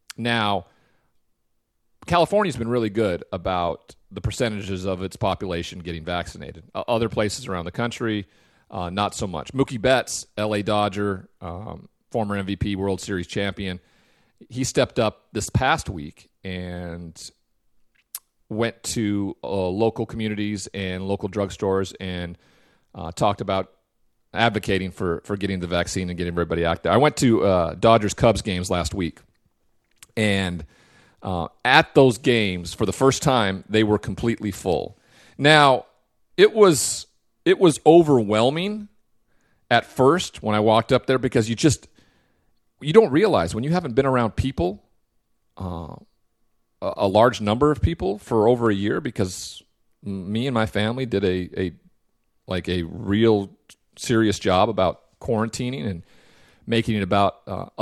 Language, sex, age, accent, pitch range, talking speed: English, male, 40-59, American, 95-115 Hz, 145 wpm